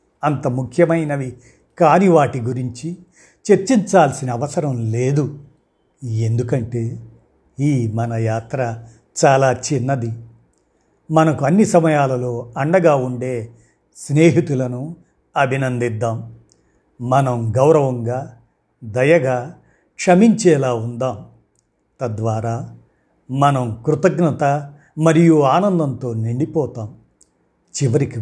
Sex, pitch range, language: male, 115-150 Hz, Telugu